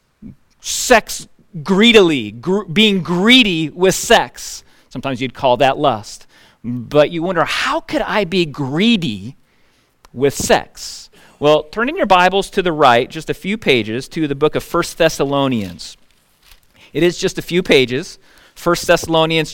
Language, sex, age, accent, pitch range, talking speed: English, male, 40-59, American, 130-180 Hz, 145 wpm